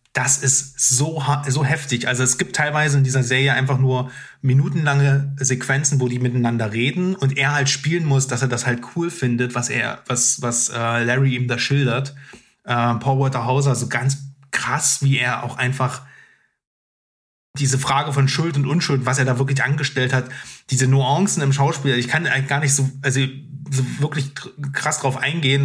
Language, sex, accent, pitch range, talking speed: German, male, German, 125-140 Hz, 185 wpm